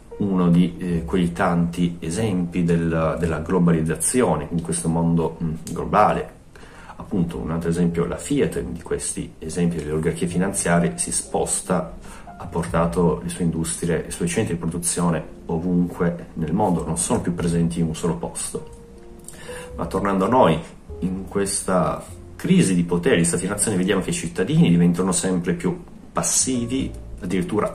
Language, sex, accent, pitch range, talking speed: Italian, male, native, 85-90 Hz, 150 wpm